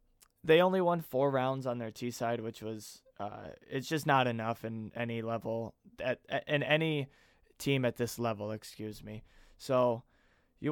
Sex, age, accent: male, 20-39, American